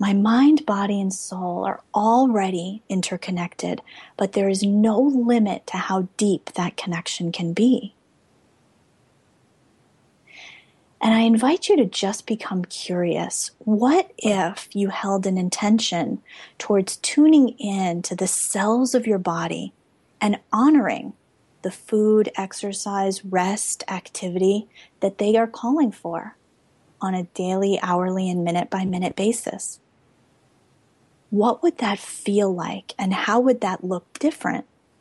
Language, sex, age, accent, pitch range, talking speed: English, female, 30-49, American, 185-225 Hz, 125 wpm